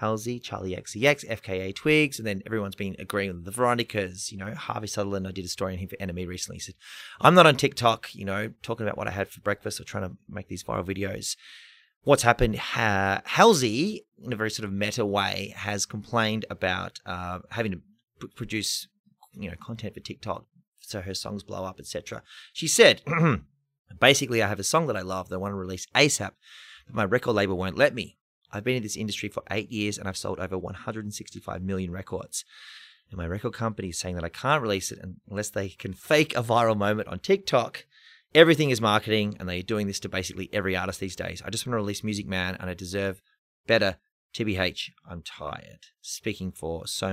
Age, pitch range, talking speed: 30-49, 95-115 Hz, 210 wpm